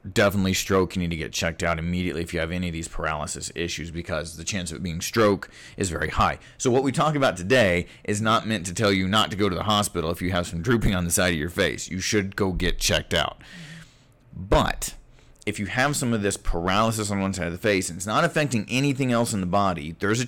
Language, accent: English, American